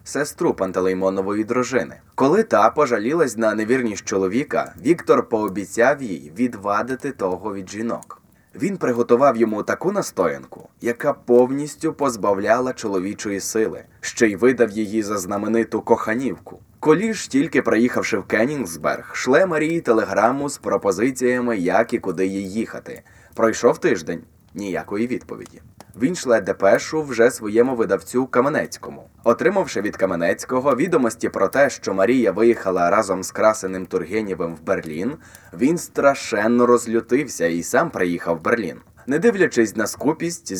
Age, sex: 20-39, male